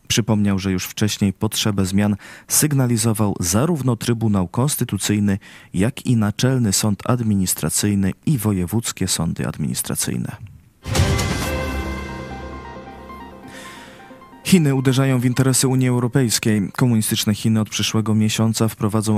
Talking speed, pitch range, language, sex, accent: 95 wpm, 100-120 Hz, Polish, male, native